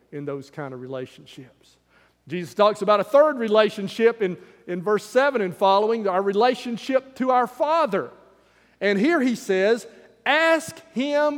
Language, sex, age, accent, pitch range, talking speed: English, male, 40-59, American, 175-250 Hz, 150 wpm